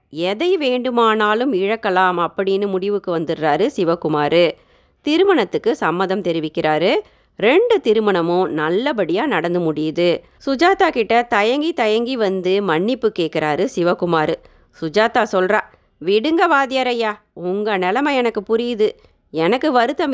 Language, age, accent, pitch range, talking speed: Tamil, 30-49, native, 180-245 Hz, 100 wpm